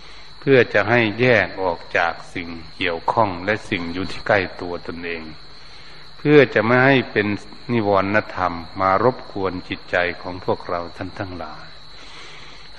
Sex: male